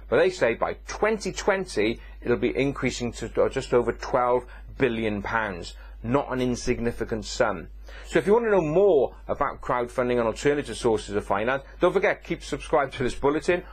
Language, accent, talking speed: English, British, 170 wpm